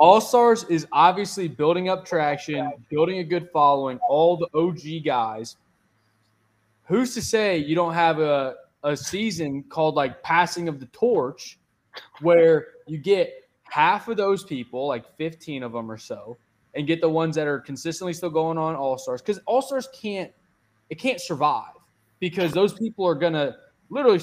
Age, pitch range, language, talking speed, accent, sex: 20-39, 140-175 Hz, English, 165 wpm, American, male